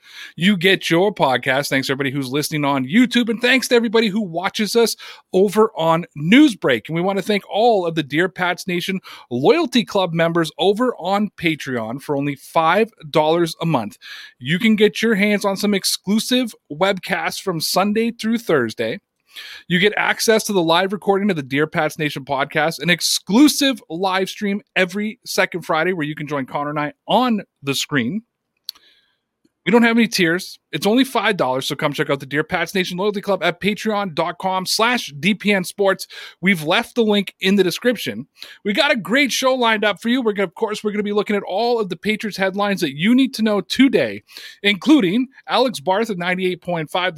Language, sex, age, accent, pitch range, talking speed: English, male, 30-49, American, 165-220 Hz, 190 wpm